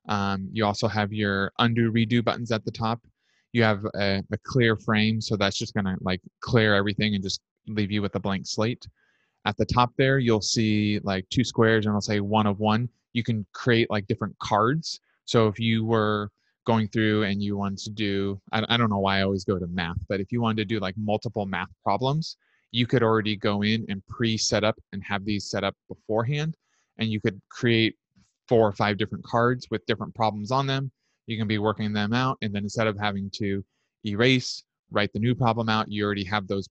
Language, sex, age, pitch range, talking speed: English, male, 20-39, 100-115 Hz, 220 wpm